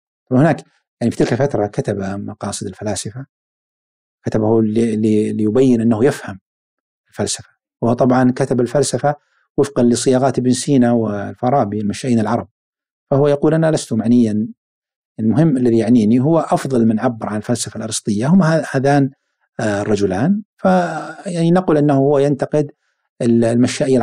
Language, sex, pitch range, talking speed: Arabic, male, 110-145 Hz, 120 wpm